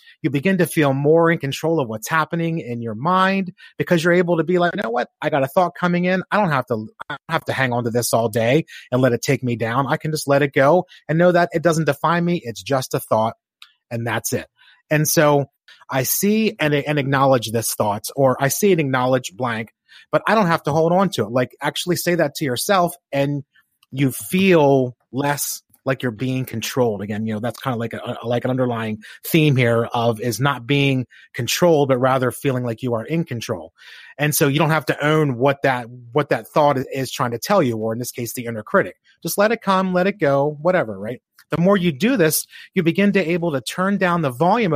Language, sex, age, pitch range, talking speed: English, male, 30-49, 125-170 Hz, 240 wpm